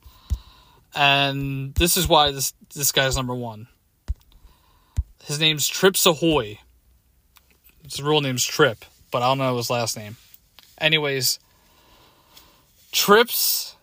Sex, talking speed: male, 115 wpm